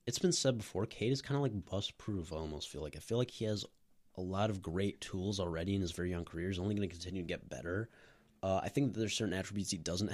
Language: English